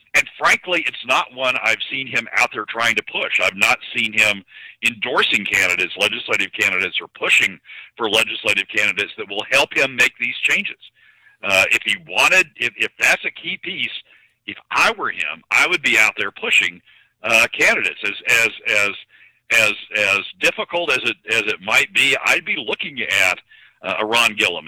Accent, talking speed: American, 180 wpm